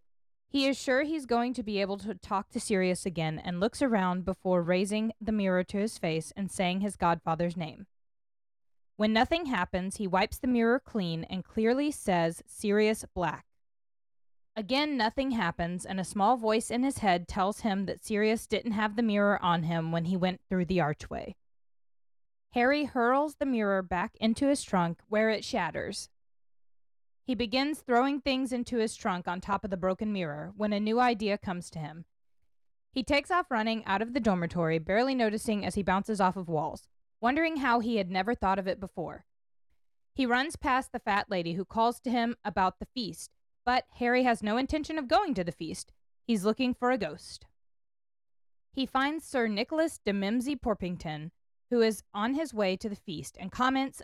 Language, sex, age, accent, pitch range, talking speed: English, female, 20-39, American, 185-245 Hz, 185 wpm